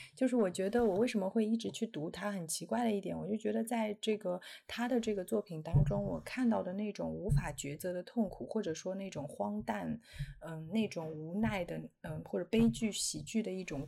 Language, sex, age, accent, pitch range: Chinese, female, 30-49, native, 160-215 Hz